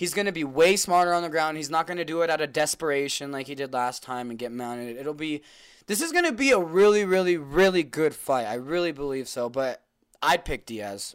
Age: 20-39